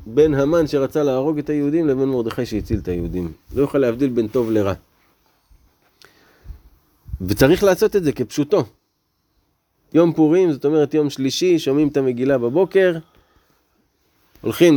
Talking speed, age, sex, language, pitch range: 135 wpm, 20-39, male, Hebrew, 100-150 Hz